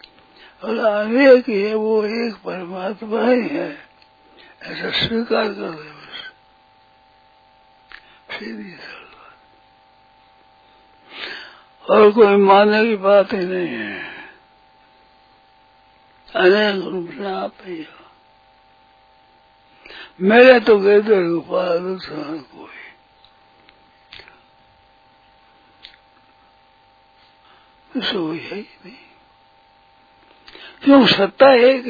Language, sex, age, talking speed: Hindi, male, 60-79, 70 wpm